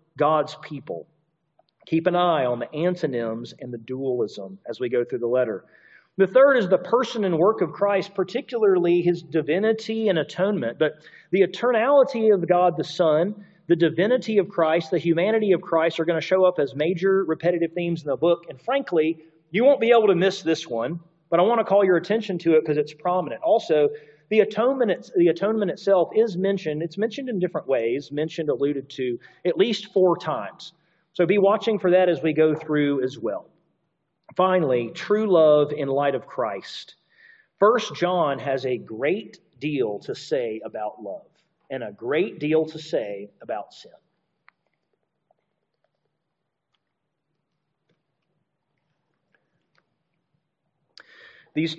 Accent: American